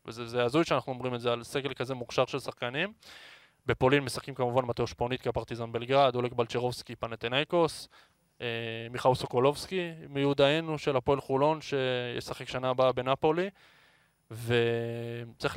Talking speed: 130 wpm